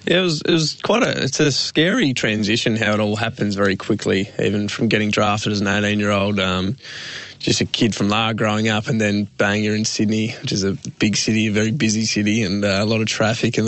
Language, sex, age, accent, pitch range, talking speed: English, male, 20-39, Australian, 105-115 Hz, 235 wpm